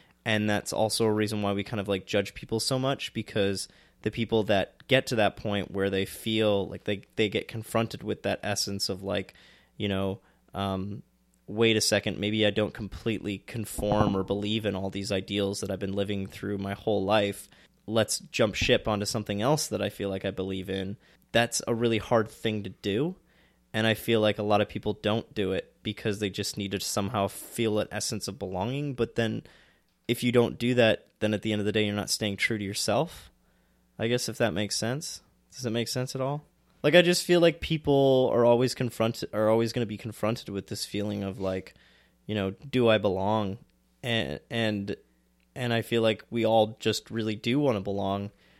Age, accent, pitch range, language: 20-39, American, 100-115 Hz, English